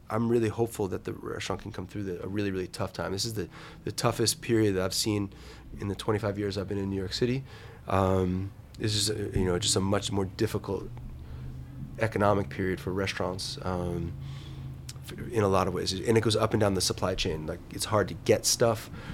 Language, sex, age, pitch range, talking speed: English, male, 20-39, 95-110 Hz, 215 wpm